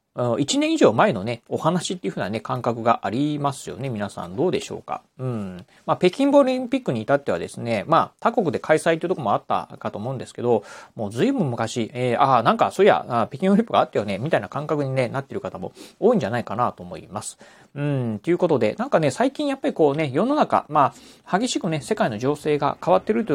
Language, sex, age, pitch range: Japanese, male, 40-59, 115-160 Hz